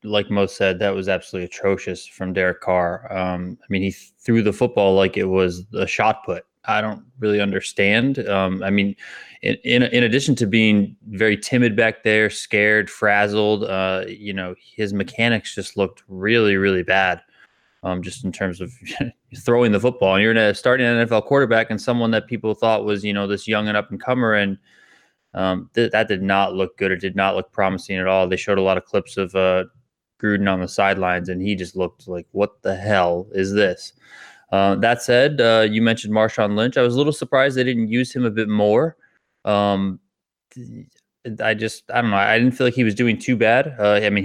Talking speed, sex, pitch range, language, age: 210 wpm, male, 95-110 Hz, English, 20-39